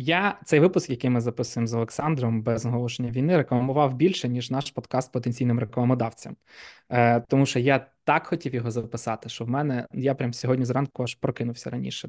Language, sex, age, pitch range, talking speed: Ukrainian, male, 20-39, 120-145 Hz, 180 wpm